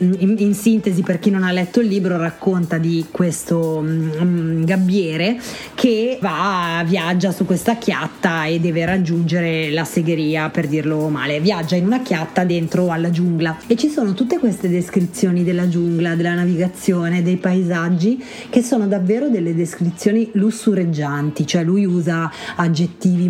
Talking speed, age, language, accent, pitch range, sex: 150 wpm, 30-49, Italian, native, 170-220 Hz, female